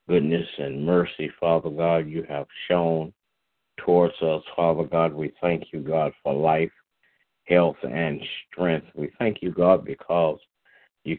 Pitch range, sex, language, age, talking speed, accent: 80-85 Hz, male, English, 60-79, 145 wpm, American